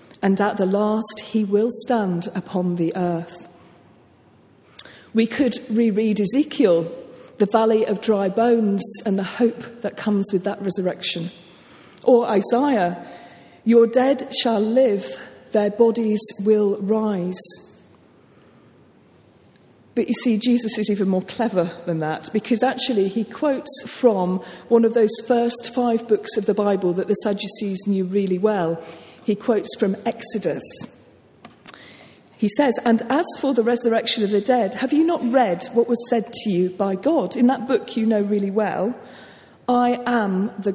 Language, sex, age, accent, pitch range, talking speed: English, female, 40-59, British, 195-235 Hz, 150 wpm